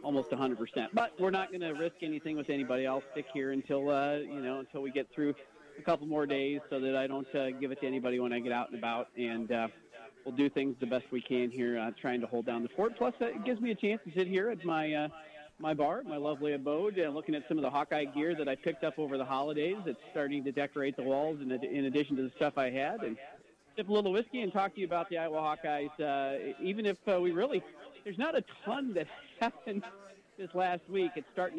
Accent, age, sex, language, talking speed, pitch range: American, 40-59, male, English, 255 wpm, 135-175 Hz